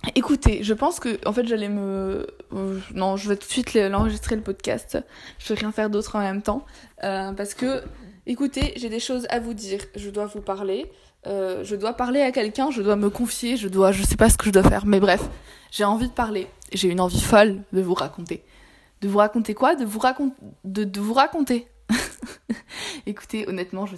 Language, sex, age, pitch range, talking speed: French, female, 20-39, 195-230 Hz, 220 wpm